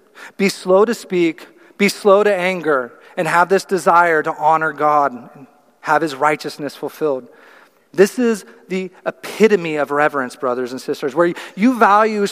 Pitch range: 150-200 Hz